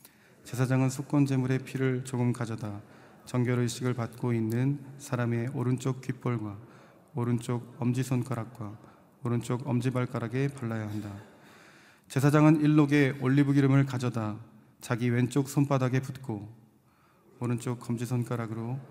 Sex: male